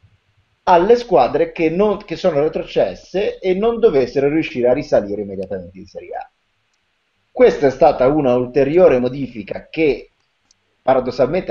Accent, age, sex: native, 30-49, male